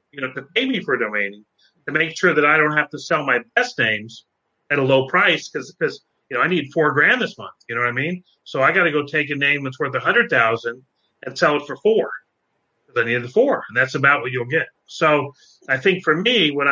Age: 40-59